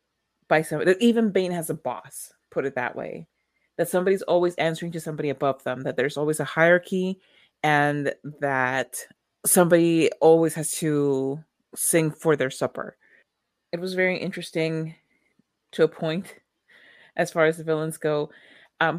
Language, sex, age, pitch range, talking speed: English, female, 30-49, 145-175 Hz, 155 wpm